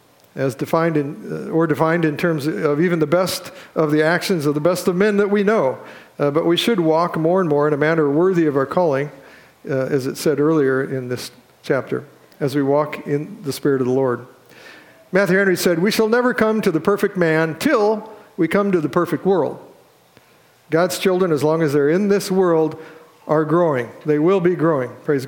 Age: 50-69